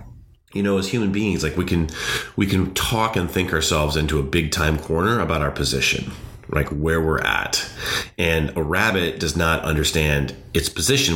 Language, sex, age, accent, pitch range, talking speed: English, male, 30-49, American, 75-95 Hz, 185 wpm